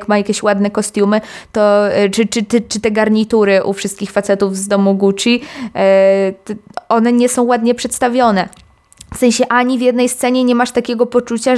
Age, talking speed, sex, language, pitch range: 20-39, 175 wpm, female, Polish, 200-240 Hz